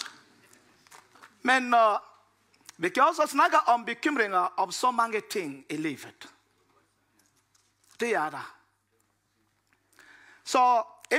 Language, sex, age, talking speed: Danish, male, 50-69, 100 wpm